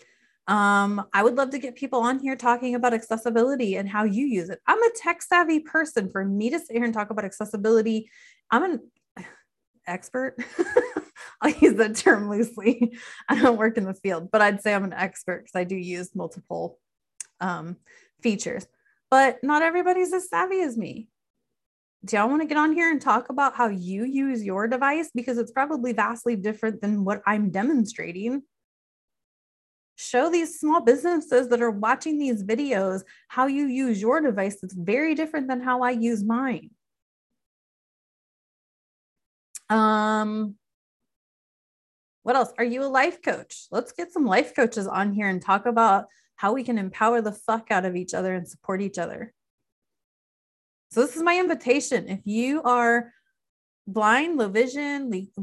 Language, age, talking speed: English, 20-39, 165 wpm